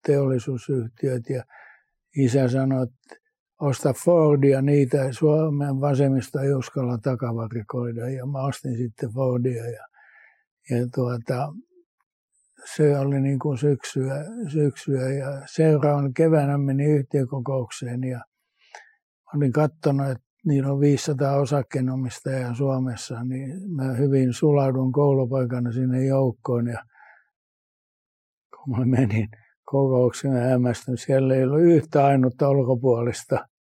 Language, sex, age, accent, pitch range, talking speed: Finnish, male, 60-79, native, 130-145 Hz, 105 wpm